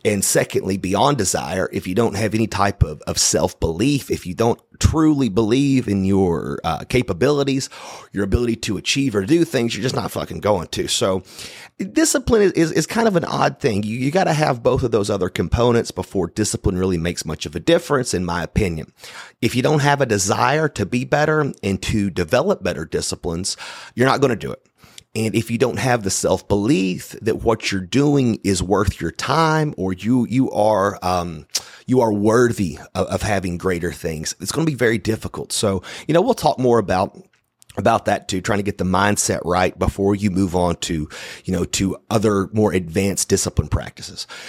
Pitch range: 95-130 Hz